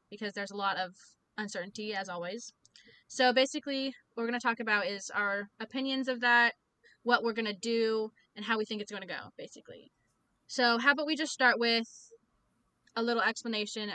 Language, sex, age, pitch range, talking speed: English, female, 10-29, 200-245 Hz, 195 wpm